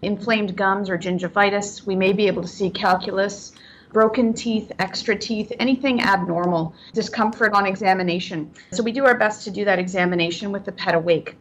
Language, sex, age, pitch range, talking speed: English, female, 30-49, 190-230 Hz, 175 wpm